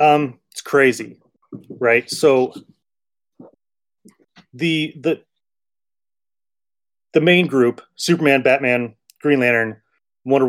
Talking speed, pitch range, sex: 85 wpm, 120-160 Hz, male